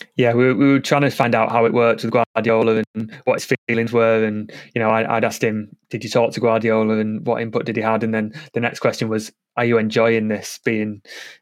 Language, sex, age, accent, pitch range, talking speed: English, male, 20-39, British, 110-115 Hz, 240 wpm